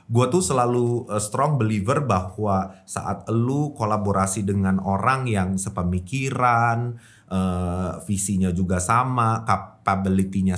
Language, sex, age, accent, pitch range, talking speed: Indonesian, male, 30-49, native, 95-120 Hz, 95 wpm